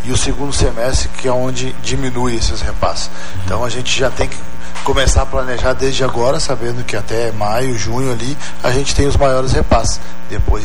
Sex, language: male, Portuguese